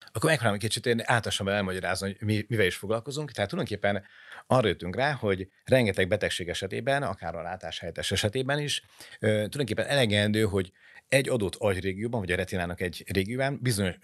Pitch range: 95-120 Hz